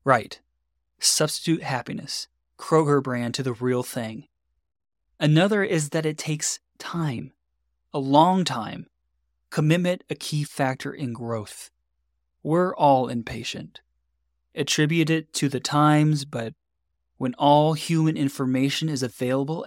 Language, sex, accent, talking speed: English, male, American, 120 wpm